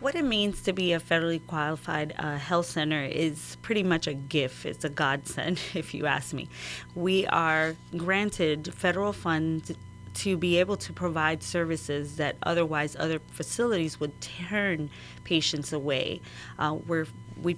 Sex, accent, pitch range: female, American, 145-175 Hz